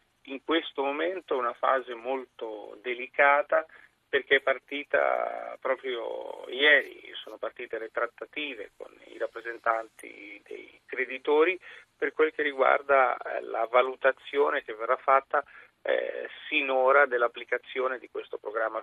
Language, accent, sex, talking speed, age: Italian, native, male, 120 wpm, 40-59